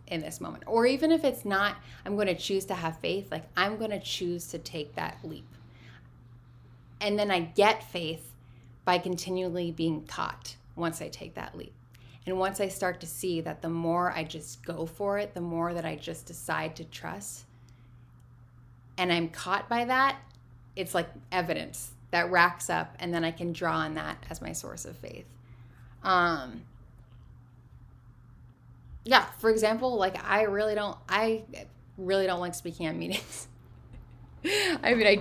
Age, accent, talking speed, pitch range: 10-29, American, 170 wpm, 125-195 Hz